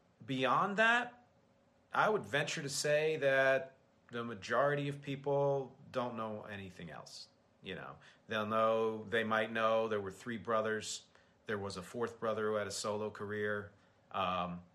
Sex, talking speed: male, 155 wpm